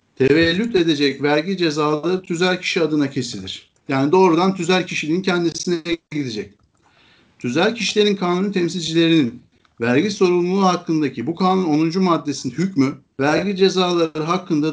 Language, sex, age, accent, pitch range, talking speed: Turkish, male, 60-79, native, 145-185 Hz, 120 wpm